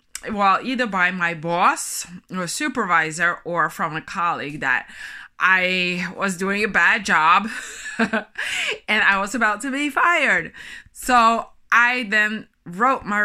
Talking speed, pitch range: 135 wpm, 185-245 Hz